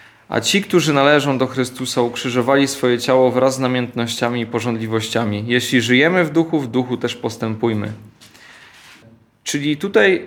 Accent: native